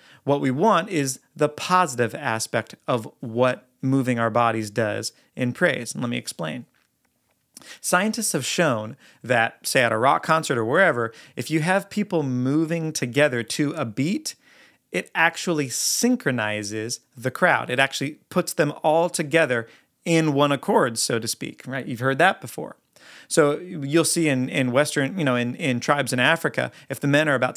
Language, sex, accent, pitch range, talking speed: English, male, American, 125-160 Hz, 170 wpm